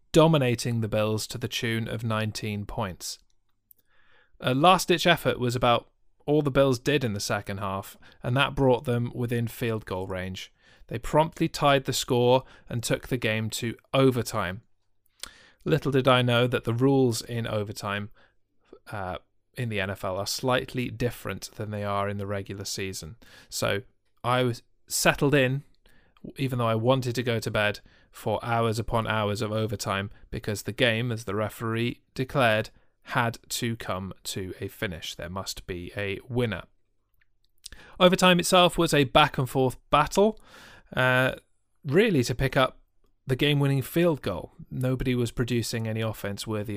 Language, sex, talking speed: English, male, 155 wpm